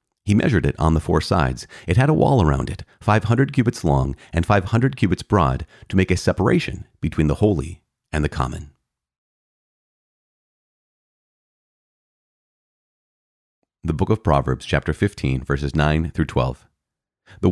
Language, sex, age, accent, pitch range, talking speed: English, male, 40-59, American, 75-100 Hz, 140 wpm